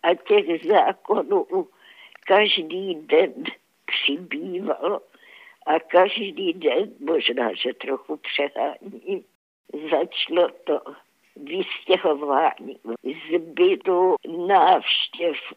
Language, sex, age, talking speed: Czech, female, 60-79, 70 wpm